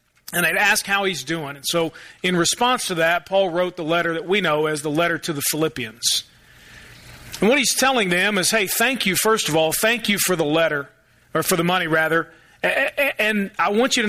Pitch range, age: 175-225 Hz, 40-59